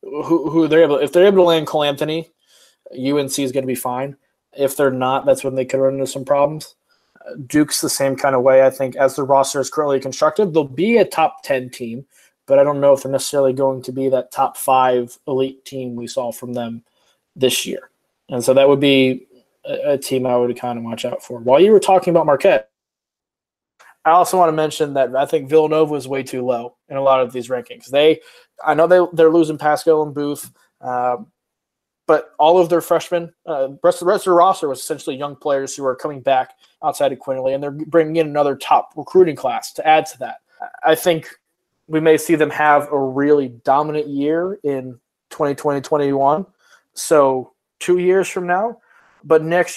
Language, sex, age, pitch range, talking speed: English, male, 20-39, 130-160 Hz, 210 wpm